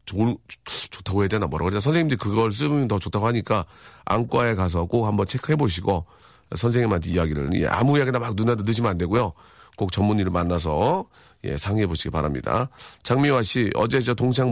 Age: 40-59